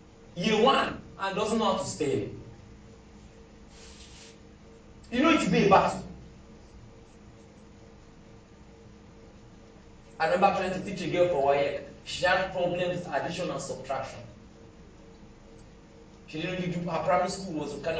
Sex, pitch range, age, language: male, 140-200 Hz, 40-59, English